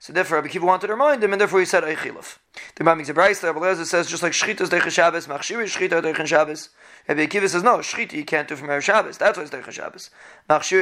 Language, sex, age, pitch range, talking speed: English, male, 30-49, 160-190 Hz, 265 wpm